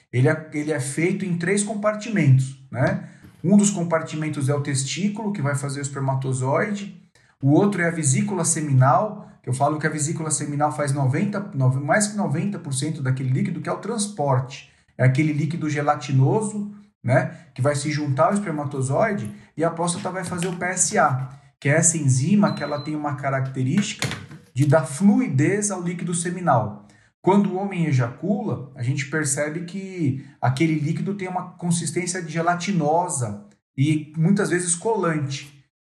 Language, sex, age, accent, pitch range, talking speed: Portuguese, male, 40-59, Brazilian, 140-180 Hz, 155 wpm